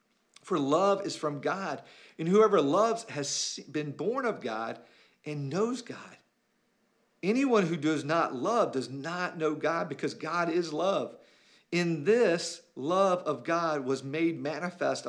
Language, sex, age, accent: English, male, 50-69, American